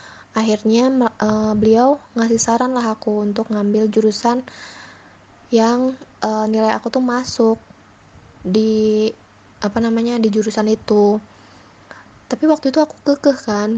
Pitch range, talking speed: 220-245 Hz, 115 wpm